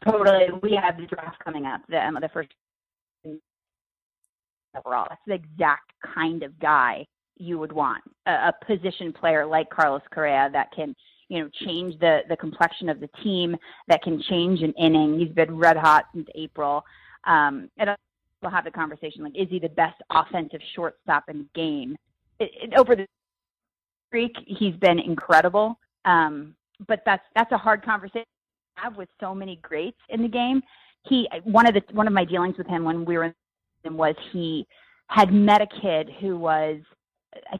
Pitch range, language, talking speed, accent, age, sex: 160-210 Hz, English, 175 wpm, American, 30-49, female